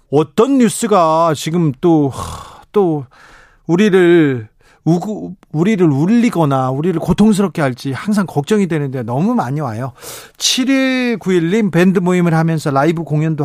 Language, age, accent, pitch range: Korean, 40-59, native, 140-180 Hz